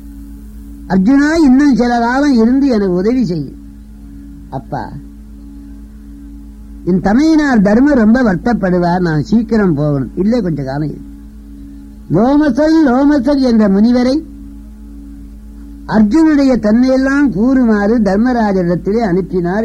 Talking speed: 70 wpm